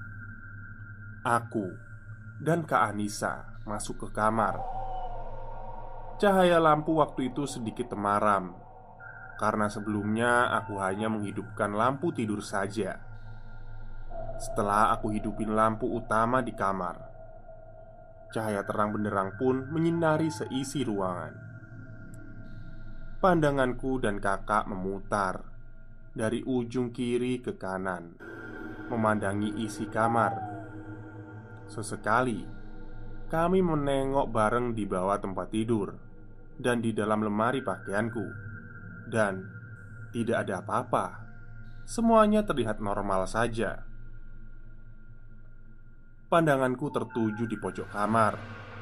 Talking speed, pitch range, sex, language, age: 90 wpm, 105-120 Hz, male, Indonesian, 20-39